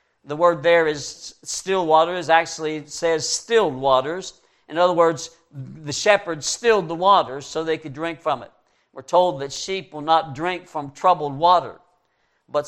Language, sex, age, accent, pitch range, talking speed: English, male, 60-79, American, 145-180 Hz, 170 wpm